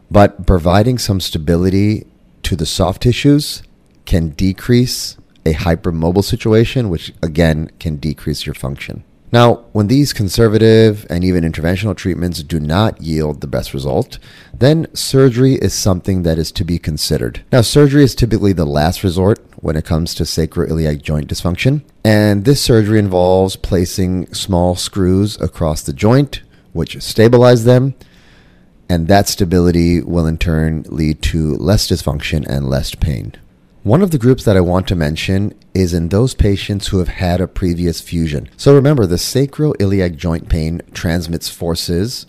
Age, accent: 30-49, American